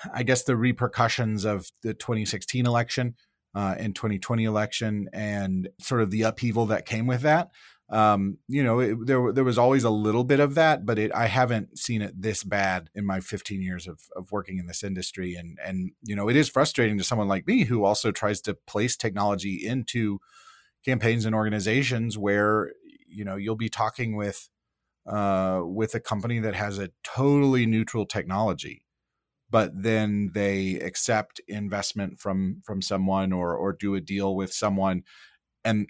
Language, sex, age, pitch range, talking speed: English, male, 30-49, 100-125 Hz, 175 wpm